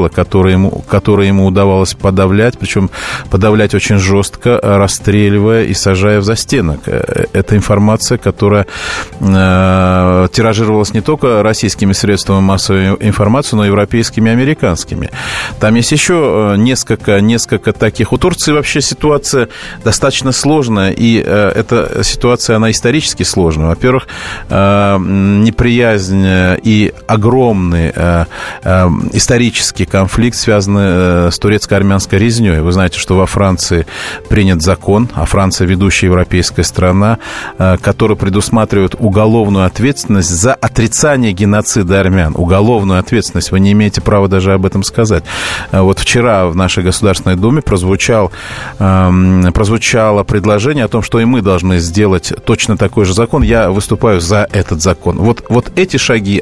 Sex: male